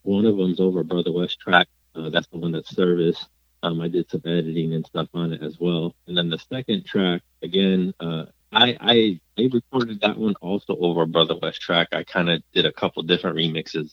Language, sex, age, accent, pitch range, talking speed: English, male, 30-49, American, 80-95 Hz, 215 wpm